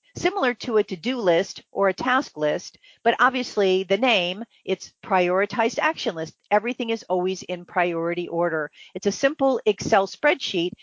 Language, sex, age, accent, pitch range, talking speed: English, female, 50-69, American, 180-230 Hz, 155 wpm